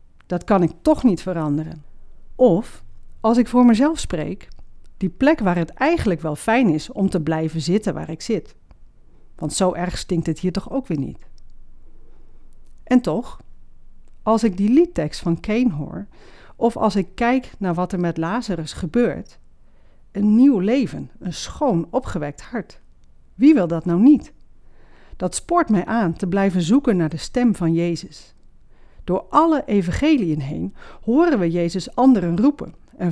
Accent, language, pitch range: Dutch, Dutch, 170-245 Hz